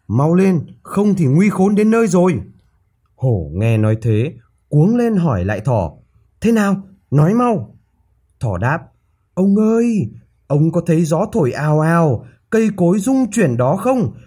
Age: 20-39